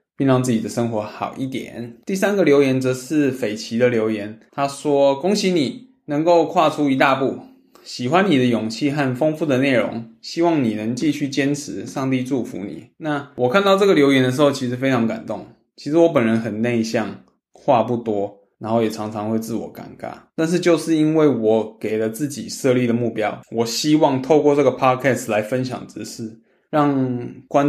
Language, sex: Chinese, male